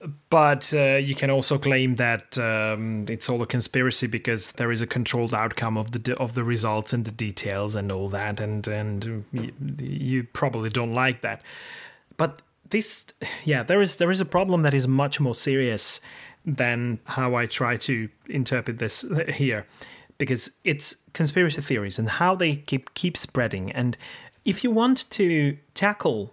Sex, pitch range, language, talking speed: male, 115-150 Hz, English, 175 wpm